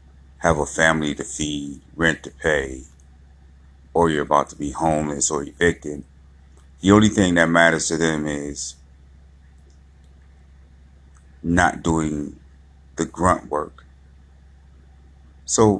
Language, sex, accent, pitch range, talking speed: English, male, American, 70-75 Hz, 115 wpm